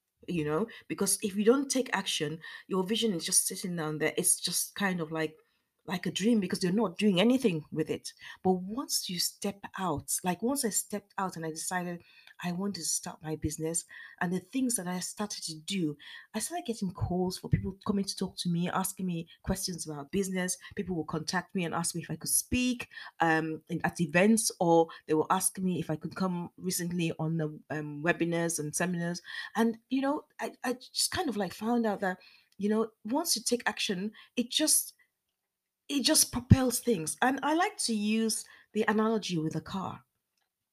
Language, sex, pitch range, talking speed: English, female, 165-220 Hz, 205 wpm